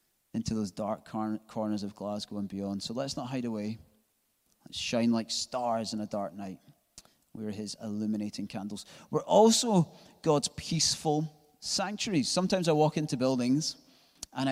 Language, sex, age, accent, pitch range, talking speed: English, male, 30-49, British, 110-160 Hz, 150 wpm